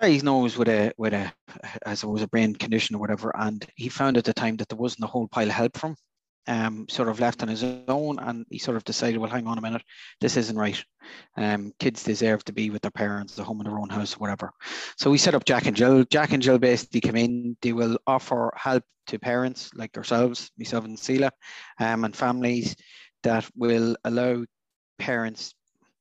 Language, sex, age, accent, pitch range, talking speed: English, male, 30-49, Irish, 110-120 Hz, 215 wpm